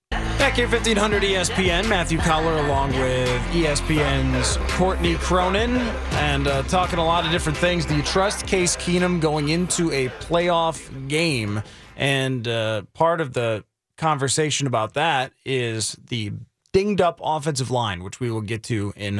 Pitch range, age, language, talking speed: 125-170 Hz, 20-39, English, 155 wpm